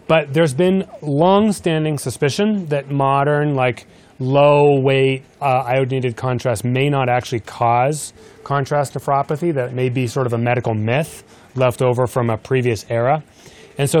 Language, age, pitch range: English, 30-49, 120-140 Hz